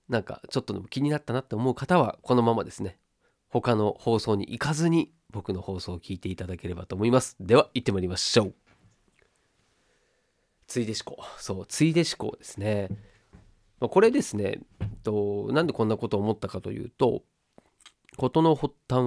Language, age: Japanese, 40-59